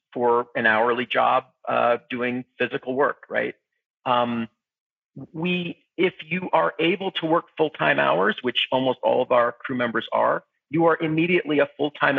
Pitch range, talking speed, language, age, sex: 130-165 Hz, 160 wpm, English, 40-59, male